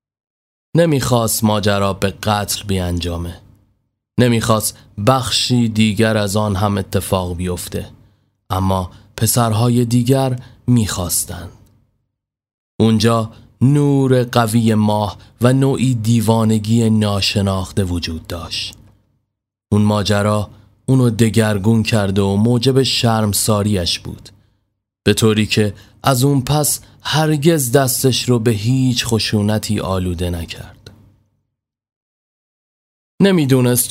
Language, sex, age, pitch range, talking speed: Persian, male, 30-49, 105-120 Hz, 90 wpm